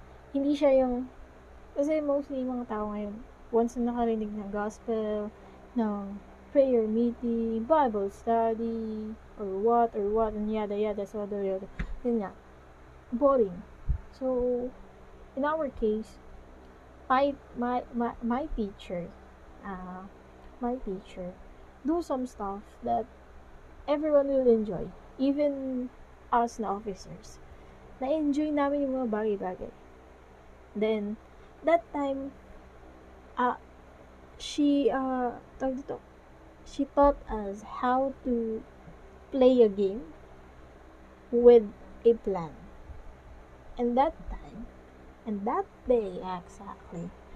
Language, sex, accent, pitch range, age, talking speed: Filipino, female, native, 175-260 Hz, 20-39, 110 wpm